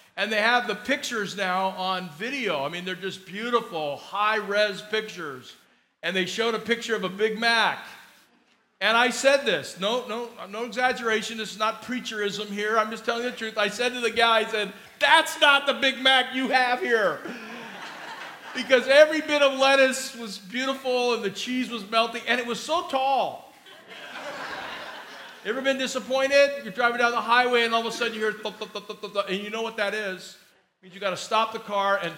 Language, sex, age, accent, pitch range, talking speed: English, male, 40-59, American, 185-230 Hz, 205 wpm